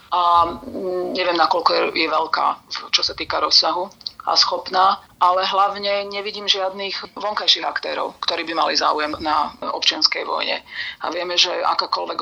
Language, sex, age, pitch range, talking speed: Slovak, female, 30-49, 165-190 Hz, 135 wpm